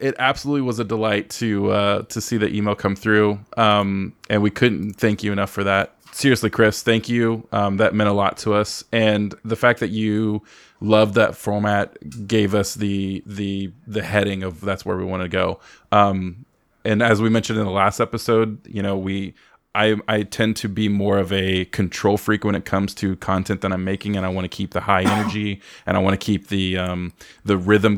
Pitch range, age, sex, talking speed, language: 95-110 Hz, 20-39, male, 215 wpm, English